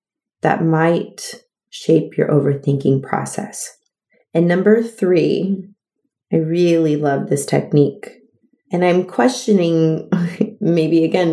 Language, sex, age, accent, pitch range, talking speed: English, female, 30-49, American, 150-175 Hz, 100 wpm